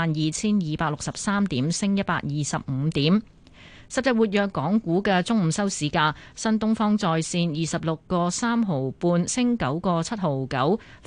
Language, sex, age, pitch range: Chinese, female, 30-49, 155-210 Hz